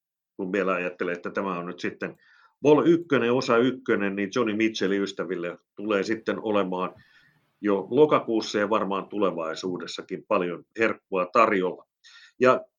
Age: 50-69